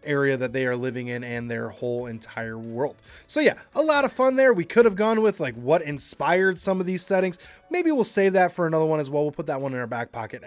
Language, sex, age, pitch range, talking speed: English, male, 20-39, 135-185 Hz, 270 wpm